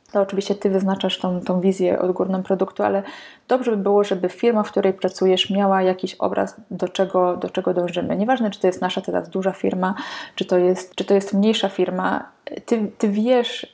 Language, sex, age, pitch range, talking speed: Polish, female, 20-39, 185-205 Hz, 185 wpm